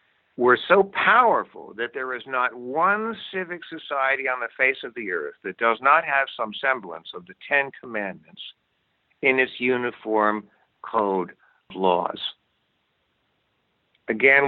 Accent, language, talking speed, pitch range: American, English, 135 wpm, 115-140 Hz